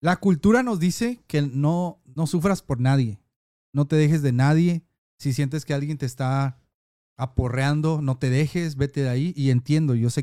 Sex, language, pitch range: male, Spanish, 125-165 Hz